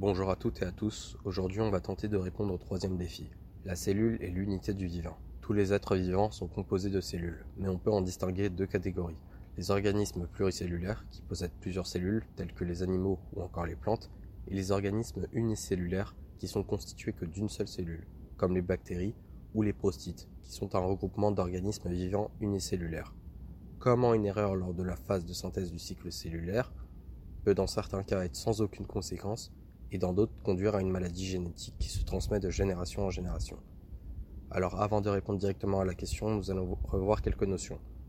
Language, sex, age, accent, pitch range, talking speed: French, male, 20-39, French, 90-100 Hz, 195 wpm